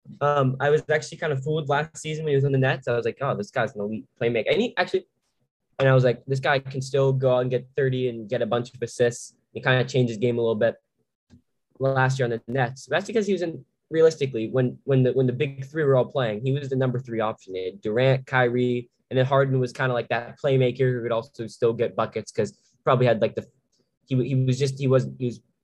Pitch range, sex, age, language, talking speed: 120-135 Hz, male, 10-29, English, 265 wpm